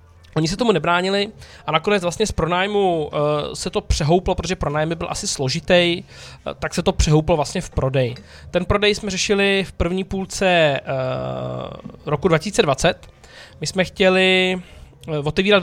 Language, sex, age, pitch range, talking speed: Czech, male, 20-39, 150-190 Hz, 140 wpm